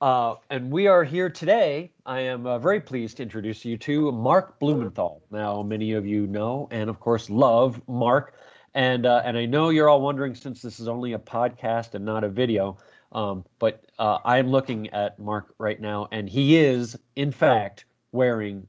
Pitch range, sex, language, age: 110-140 Hz, male, English, 30-49